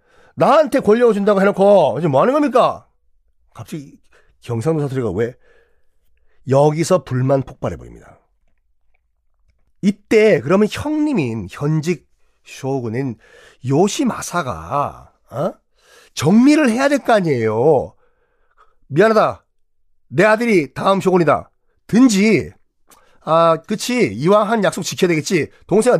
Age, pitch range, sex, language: 40-59, 140-225 Hz, male, Korean